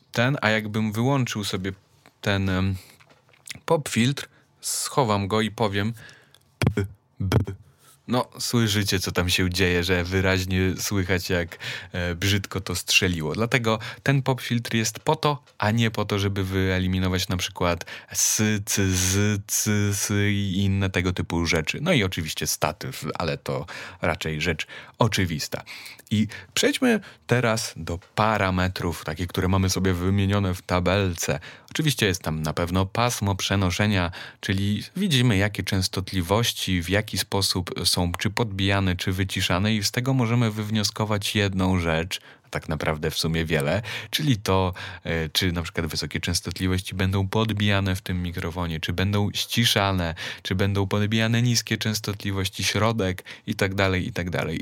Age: 30-49